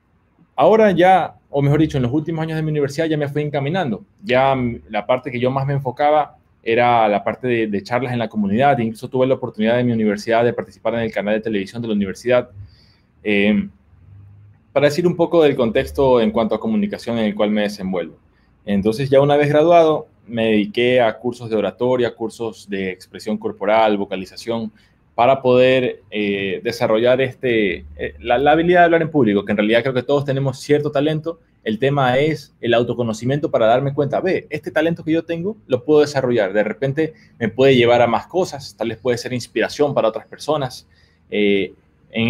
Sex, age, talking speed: male, 20-39, 195 wpm